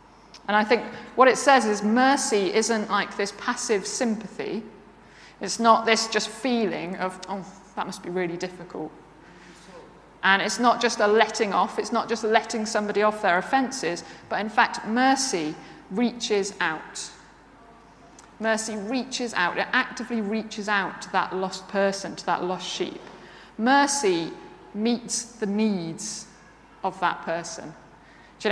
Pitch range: 195-235 Hz